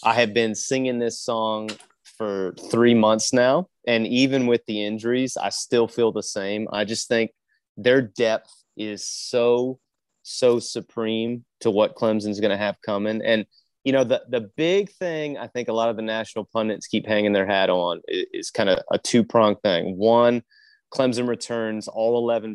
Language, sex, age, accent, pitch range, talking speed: English, male, 30-49, American, 110-135 Hz, 180 wpm